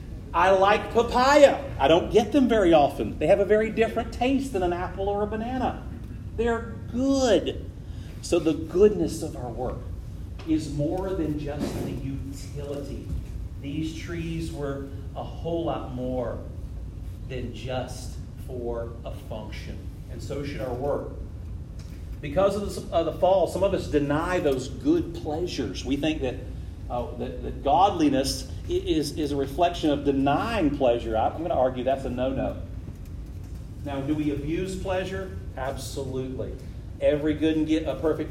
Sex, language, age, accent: male, English, 40-59, American